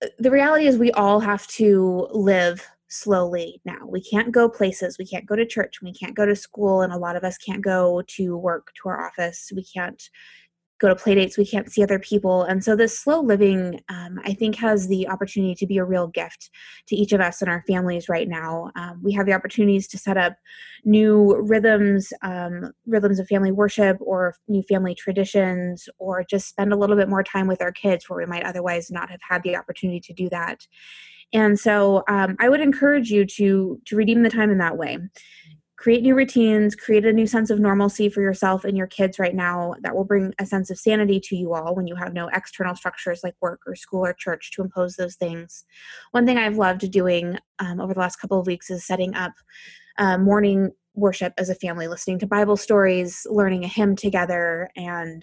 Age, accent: 20-39, American